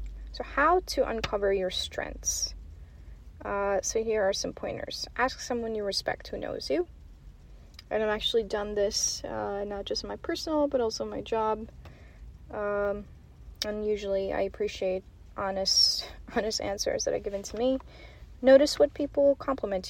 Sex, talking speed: female, 155 wpm